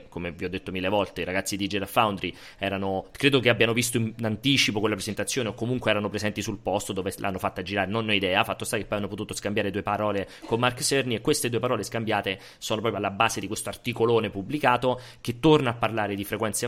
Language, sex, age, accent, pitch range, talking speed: Italian, male, 30-49, native, 100-125 Hz, 230 wpm